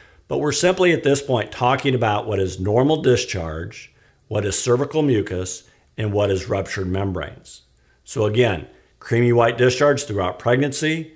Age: 50-69